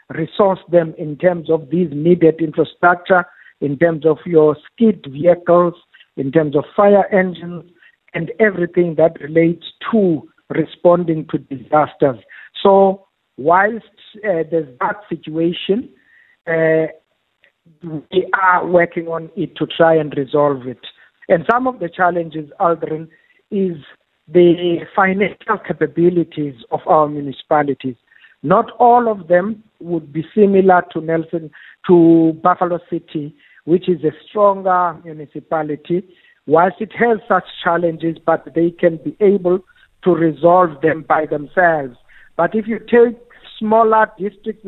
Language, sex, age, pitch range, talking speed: English, male, 60-79, 160-195 Hz, 130 wpm